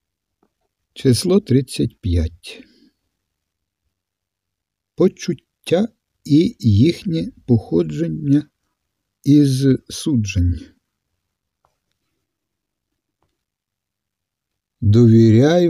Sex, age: male, 50-69